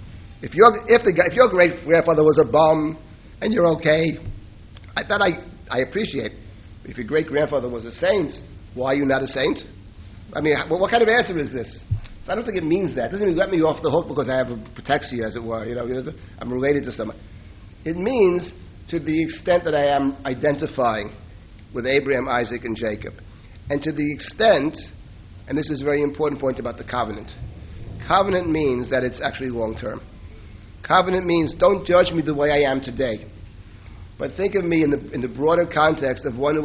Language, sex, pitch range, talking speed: English, male, 105-150 Hz, 210 wpm